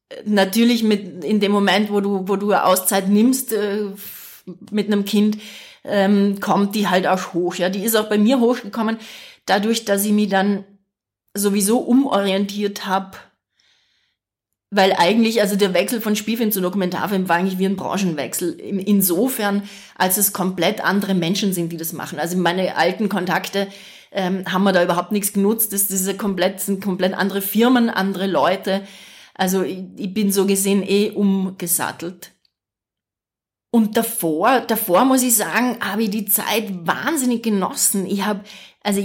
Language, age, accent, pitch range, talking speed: German, 30-49, German, 190-215 Hz, 165 wpm